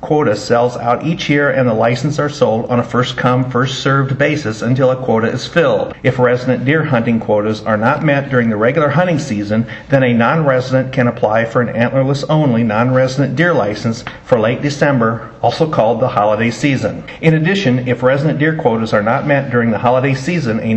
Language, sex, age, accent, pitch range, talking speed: English, male, 50-69, American, 120-140 Hz, 190 wpm